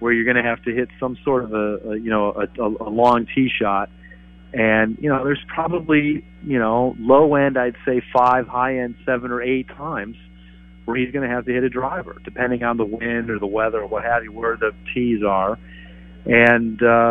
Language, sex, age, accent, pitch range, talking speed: English, male, 40-59, American, 105-130 Hz, 220 wpm